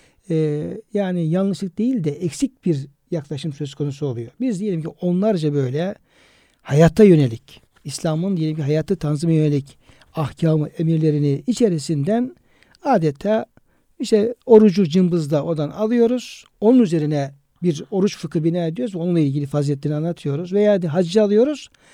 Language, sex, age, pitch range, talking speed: Turkish, male, 60-79, 150-195 Hz, 125 wpm